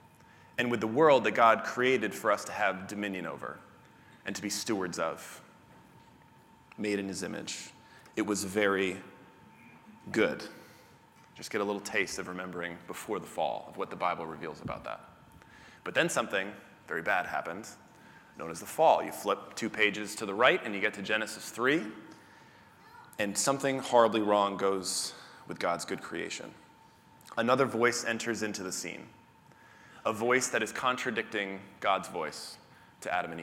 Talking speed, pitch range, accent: 165 wpm, 100-130 Hz, American